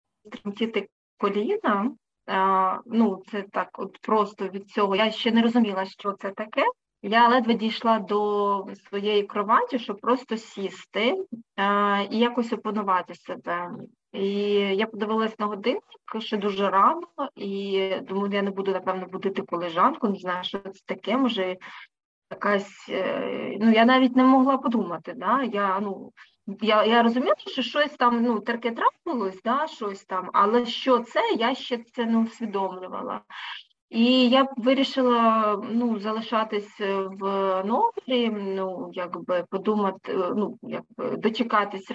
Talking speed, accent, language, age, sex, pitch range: 130 wpm, native, Ukrainian, 20-39, female, 195-240 Hz